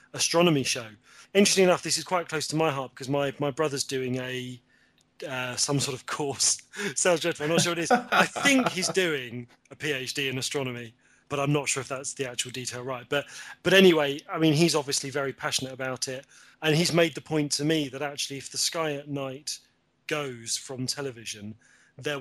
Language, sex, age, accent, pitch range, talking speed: English, male, 30-49, British, 130-150 Hz, 210 wpm